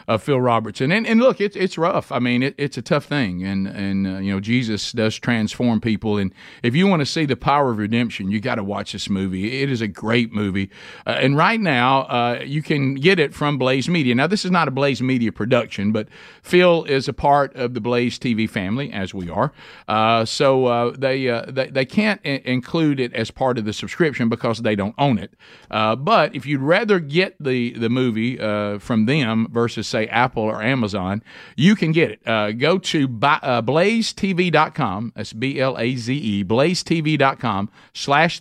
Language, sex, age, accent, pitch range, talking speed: English, male, 50-69, American, 110-150 Hz, 210 wpm